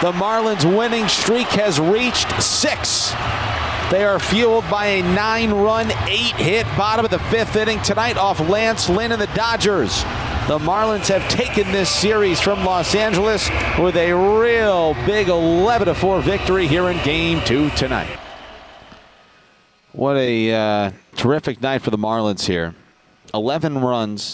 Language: English